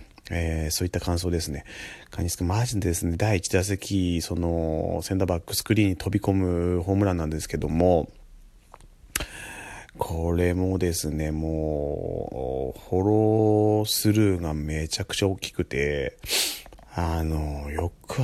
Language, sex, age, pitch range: Japanese, male, 30-49, 85-105 Hz